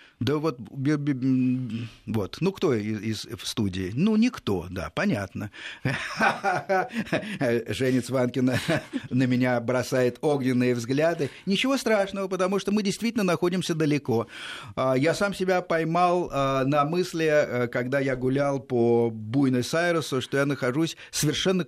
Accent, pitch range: native, 115-155 Hz